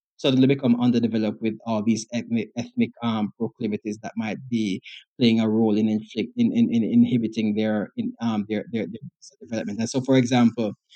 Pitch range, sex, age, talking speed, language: 115-145 Hz, male, 20-39, 180 wpm, English